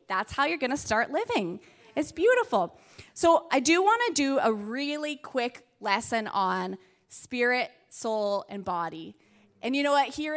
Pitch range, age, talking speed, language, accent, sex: 210-290 Hz, 20-39, 170 wpm, English, American, female